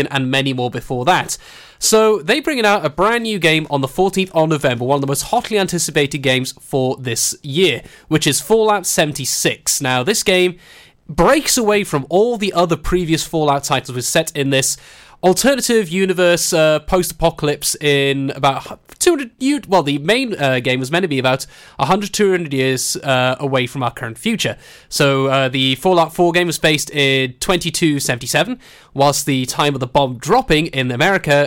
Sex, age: male, 20-39